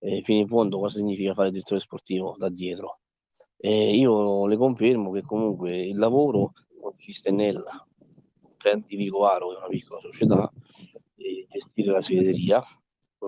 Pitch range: 95-110 Hz